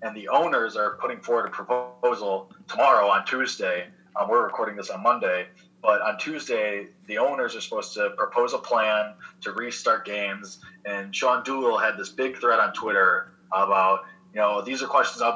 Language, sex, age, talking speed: English, male, 20-39, 185 wpm